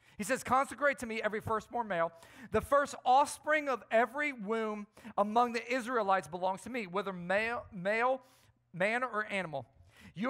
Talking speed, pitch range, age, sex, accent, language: 155 wpm, 180-240 Hz, 40-59, male, American, English